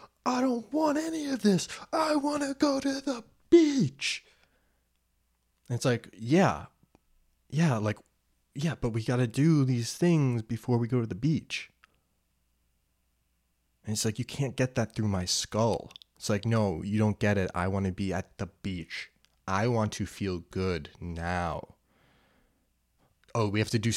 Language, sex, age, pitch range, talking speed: English, male, 20-39, 85-125 Hz, 170 wpm